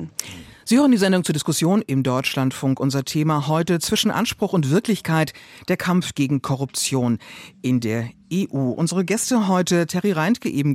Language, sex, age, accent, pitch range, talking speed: German, female, 50-69, German, 150-205 Hz, 160 wpm